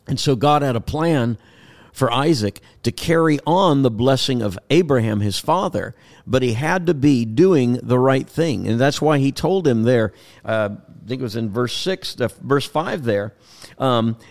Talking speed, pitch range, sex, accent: 190 wpm, 115-145 Hz, male, American